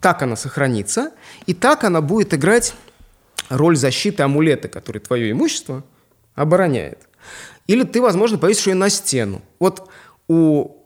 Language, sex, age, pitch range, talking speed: Russian, male, 30-49, 120-190 Hz, 135 wpm